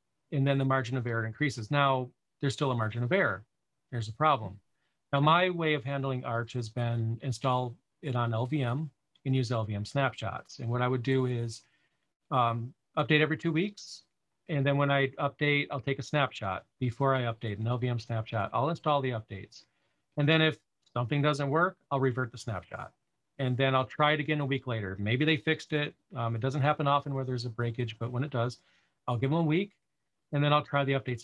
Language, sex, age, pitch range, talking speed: Russian, male, 40-59, 120-140 Hz, 210 wpm